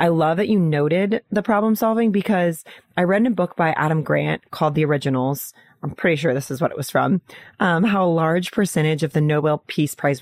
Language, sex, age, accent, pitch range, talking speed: English, female, 30-49, American, 150-190 Hz, 230 wpm